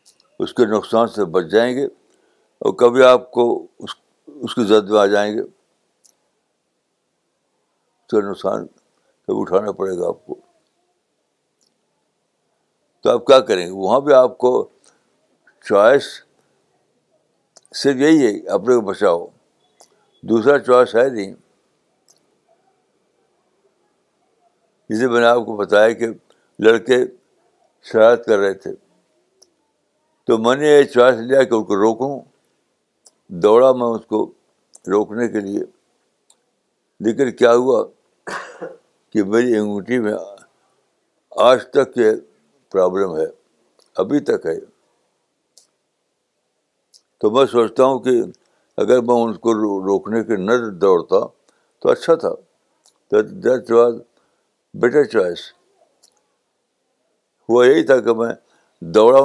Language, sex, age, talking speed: Urdu, male, 60-79, 120 wpm